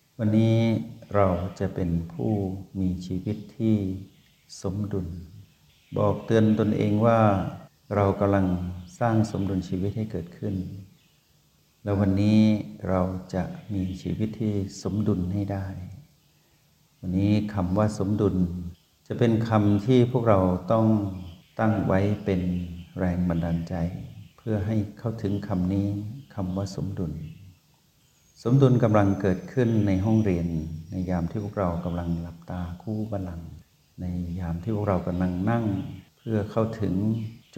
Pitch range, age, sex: 90-110 Hz, 60-79, male